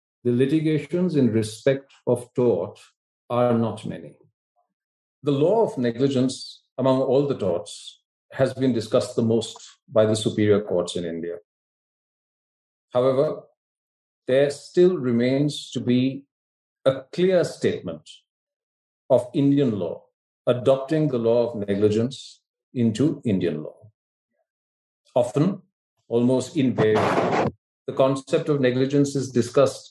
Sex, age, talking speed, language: male, 50-69, 115 wpm, English